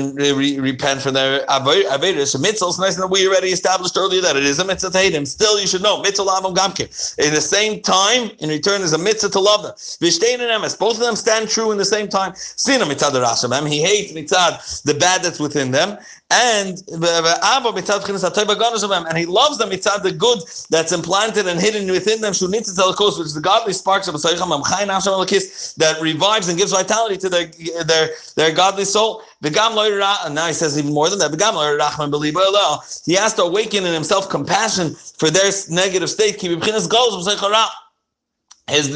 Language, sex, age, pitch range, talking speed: English, male, 40-59, 155-200 Hz, 170 wpm